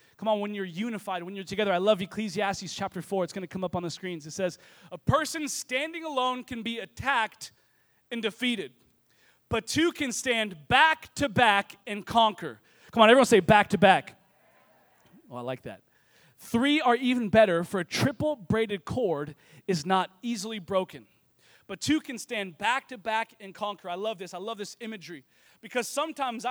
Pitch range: 200-255 Hz